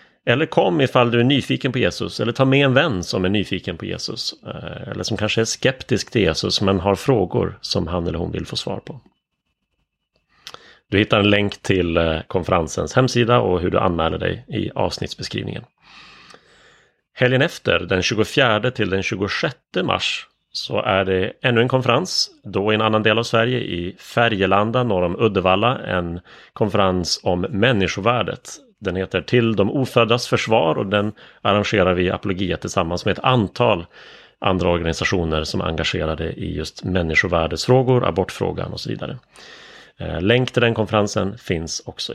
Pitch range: 90-115 Hz